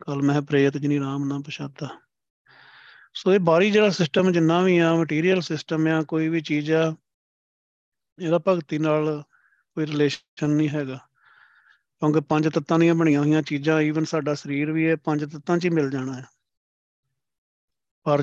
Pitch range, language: 145-165 Hz, Punjabi